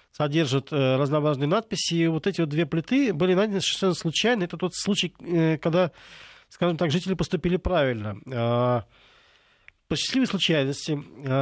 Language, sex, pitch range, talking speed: Russian, male, 135-175 Hz, 130 wpm